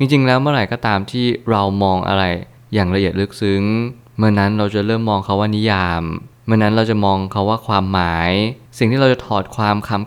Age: 20-39